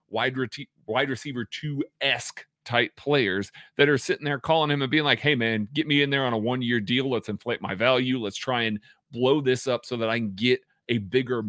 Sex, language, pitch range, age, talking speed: male, English, 110-135 Hz, 40-59, 220 wpm